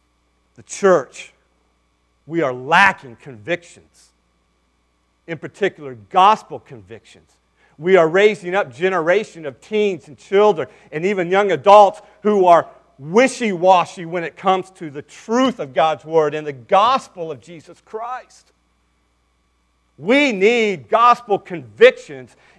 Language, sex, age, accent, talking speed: English, male, 40-59, American, 120 wpm